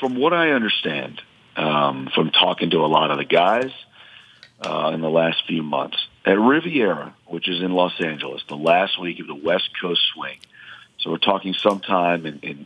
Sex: male